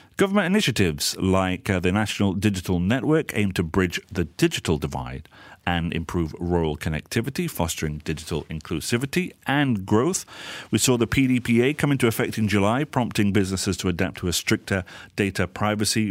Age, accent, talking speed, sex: 40-59, British, 145 wpm, male